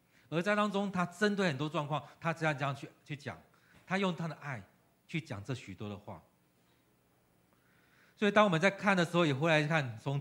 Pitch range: 120-175 Hz